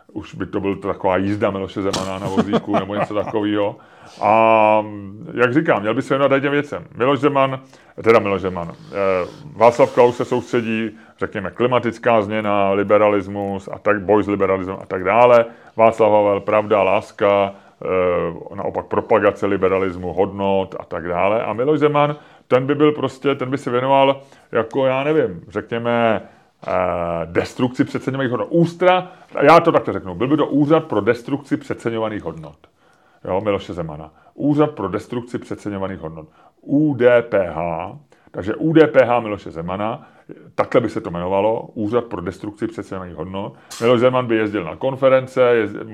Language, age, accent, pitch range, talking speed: Czech, 30-49, native, 100-130 Hz, 150 wpm